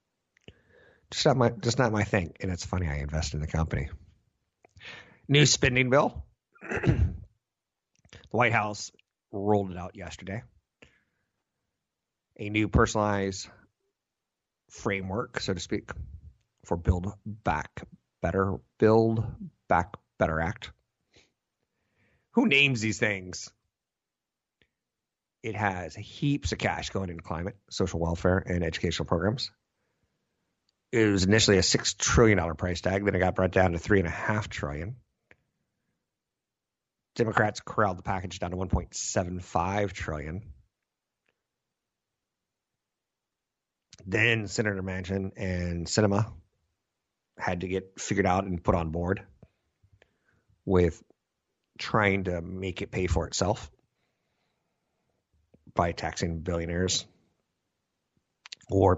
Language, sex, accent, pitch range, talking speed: English, male, American, 90-105 Hz, 110 wpm